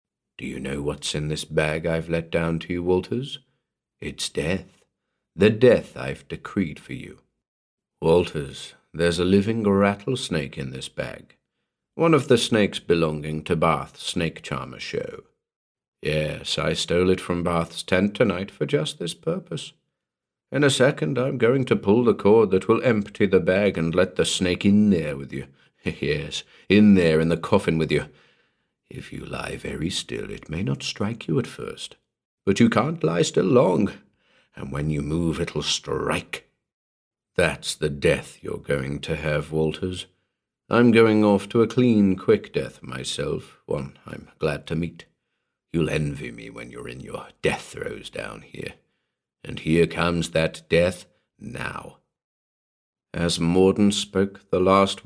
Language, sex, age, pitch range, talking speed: English, male, 50-69, 80-100 Hz, 160 wpm